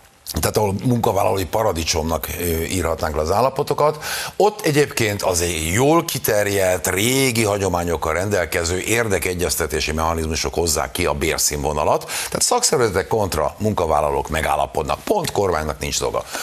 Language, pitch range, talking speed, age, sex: Hungarian, 80-135 Hz, 115 wpm, 60-79, male